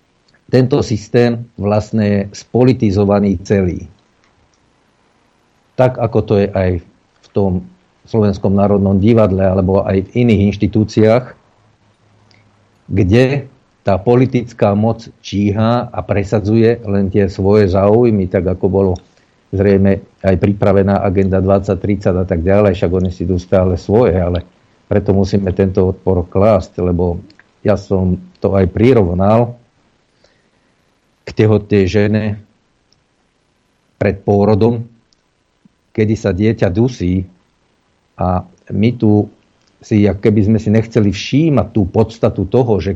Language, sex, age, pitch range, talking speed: Slovak, male, 50-69, 95-115 Hz, 115 wpm